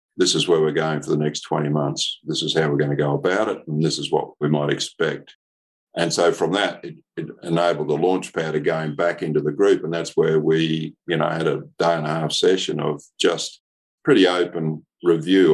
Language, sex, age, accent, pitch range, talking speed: English, male, 50-69, Australian, 75-85 Hz, 230 wpm